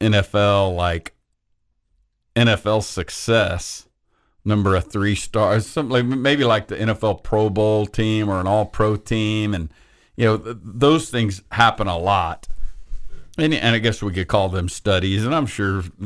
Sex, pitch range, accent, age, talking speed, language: male, 95-110 Hz, American, 50-69, 155 wpm, English